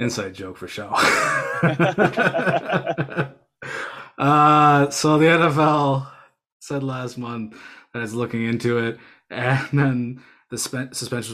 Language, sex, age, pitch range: English, male, 20-39, 105-125 Hz